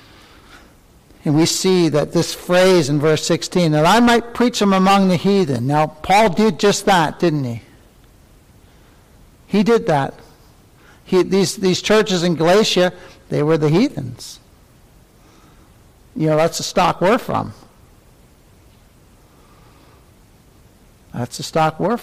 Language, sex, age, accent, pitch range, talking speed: English, male, 60-79, American, 150-190 Hz, 130 wpm